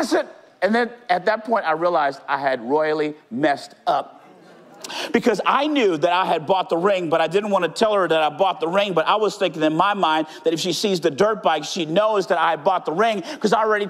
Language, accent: English, American